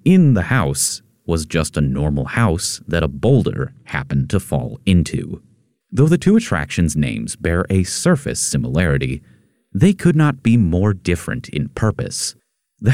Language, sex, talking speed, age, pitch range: English, male, 155 wpm, 30-49, 80-125 Hz